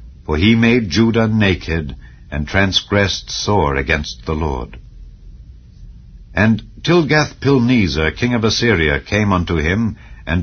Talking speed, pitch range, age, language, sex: 115 wpm, 80-110 Hz, 60-79, English, male